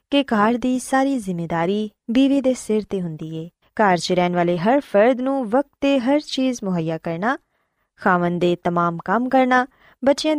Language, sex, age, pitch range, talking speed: Punjabi, female, 20-39, 180-265 Hz, 160 wpm